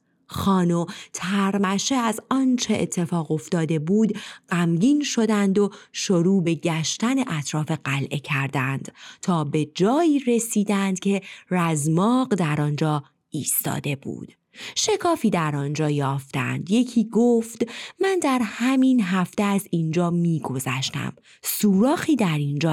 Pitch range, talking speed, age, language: 160-230 Hz, 110 wpm, 30-49, Persian